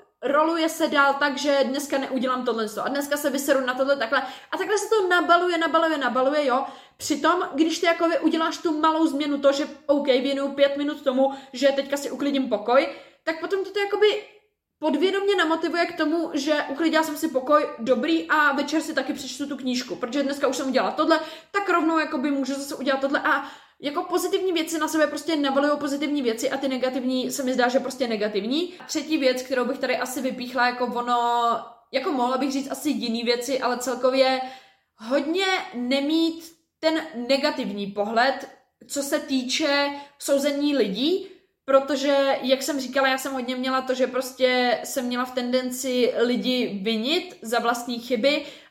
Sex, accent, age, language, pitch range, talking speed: female, native, 20-39, Czech, 255-315 Hz, 185 wpm